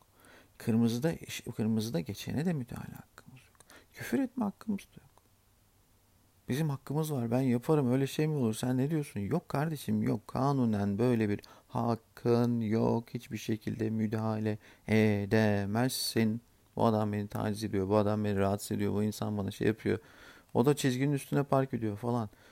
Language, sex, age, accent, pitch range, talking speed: Turkish, male, 50-69, native, 100-125 Hz, 155 wpm